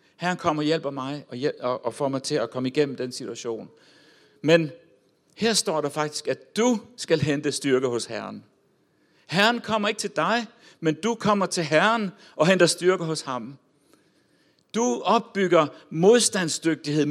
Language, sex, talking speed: Danish, male, 155 wpm